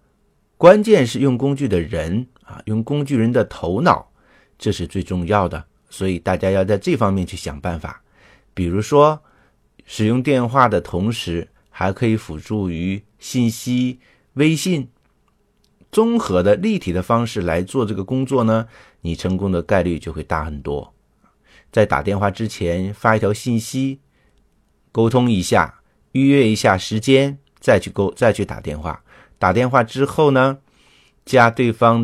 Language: Chinese